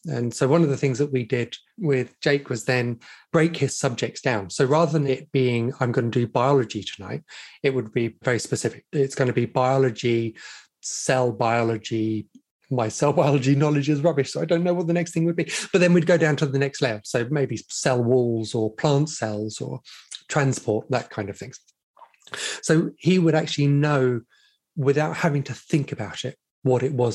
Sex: male